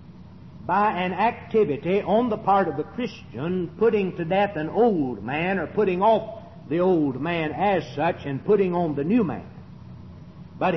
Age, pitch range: 60-79, 155-210 Hz